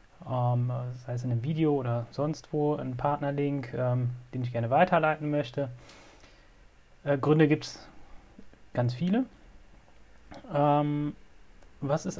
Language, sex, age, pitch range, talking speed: German, male, 30-49, 130-150 Hz, 110 wpm